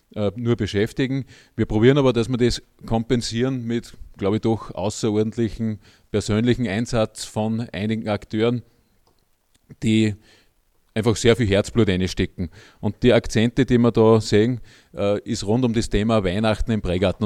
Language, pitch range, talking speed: German, 105-120 Hz, 140 wpm